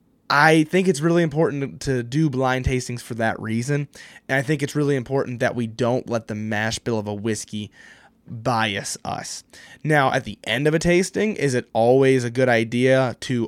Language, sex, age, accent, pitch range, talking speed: English, male, 20-39, American, 115-140 Hz, 195 wpm